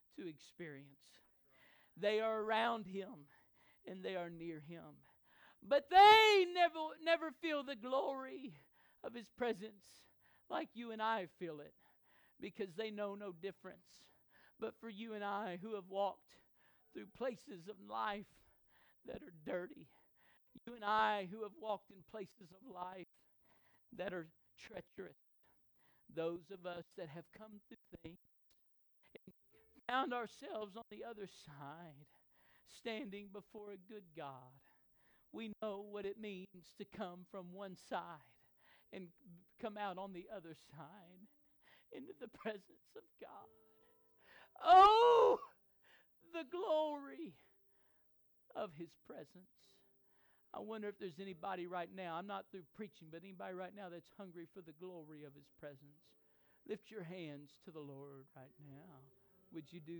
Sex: male